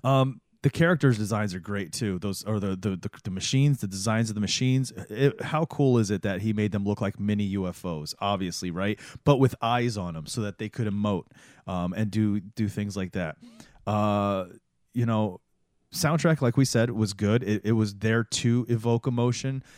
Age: 30-49